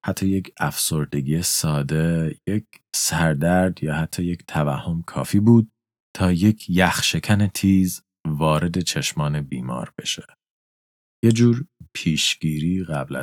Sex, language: male, Persian